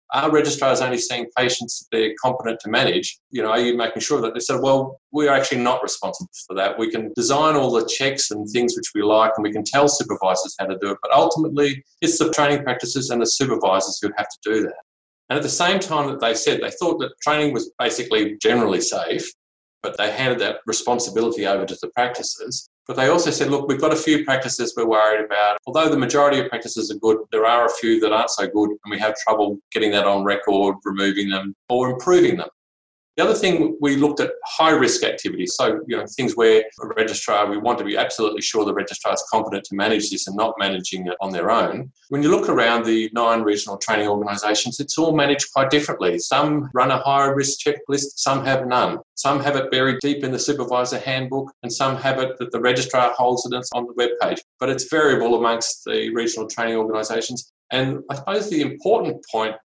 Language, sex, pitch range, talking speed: English, male, 110-140 Hz, 220 wpm